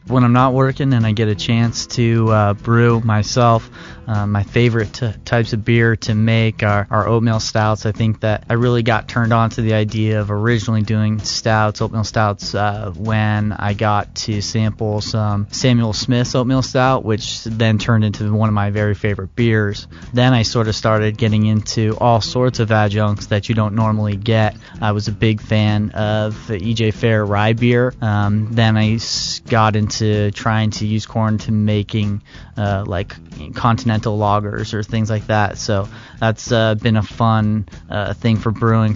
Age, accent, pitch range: 30-49, American, 105-115 Hz